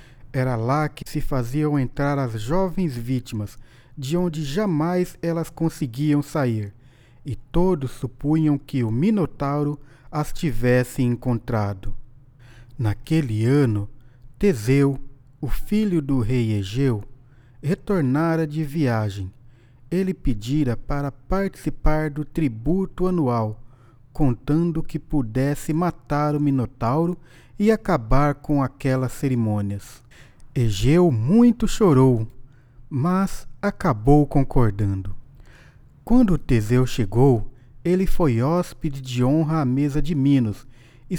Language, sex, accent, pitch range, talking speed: Portuguese, male, Brazilian, 120-160 Hz, 105 wpm